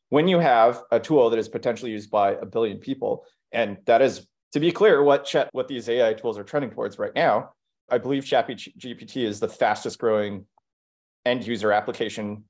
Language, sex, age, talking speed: English, male, 30-49, 195 wpm